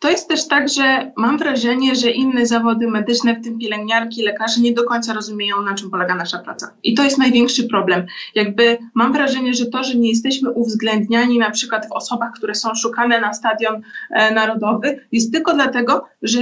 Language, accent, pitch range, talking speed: Polish, native, 220-260 Hz, 195 wpm